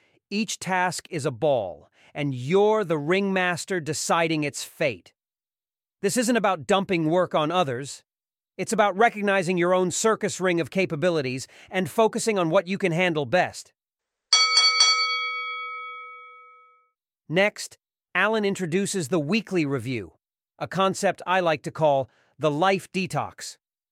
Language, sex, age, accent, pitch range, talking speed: English, male, 40-59, American, 145-200 Hz, 130 wpm